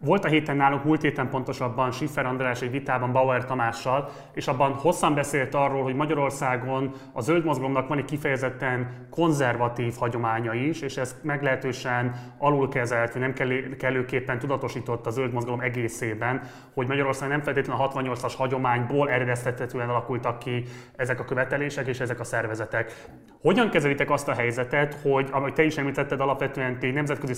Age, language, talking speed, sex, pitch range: 30-49, Hungarian, 145 wpm, male, 125-140 Hz